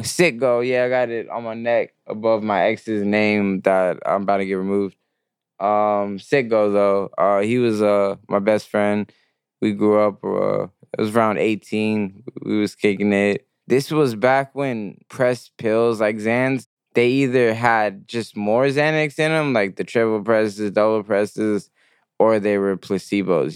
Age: 20-39